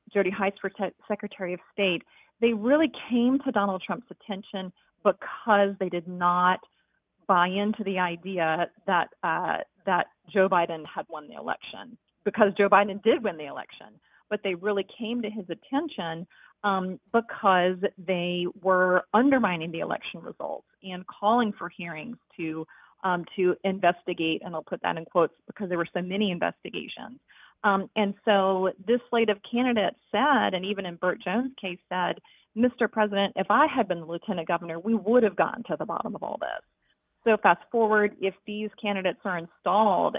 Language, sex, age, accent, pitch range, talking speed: English, female, 30-49, American, 180-225 Hz, 170 wpm